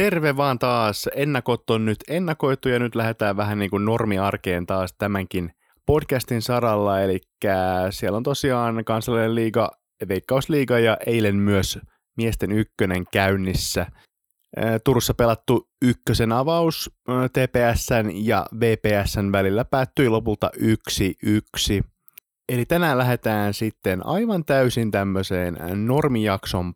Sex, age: male, 20-39